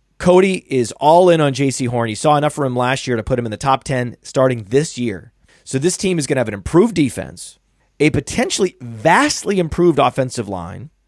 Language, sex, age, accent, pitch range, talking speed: English, male, 30-49, American, 115-155 Hz, 215 wpm